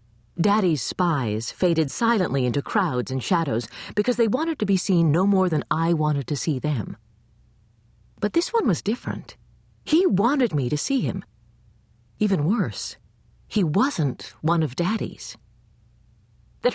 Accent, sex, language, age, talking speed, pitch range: American, female, English, 40-59, 145 wpm, 130-215 Hz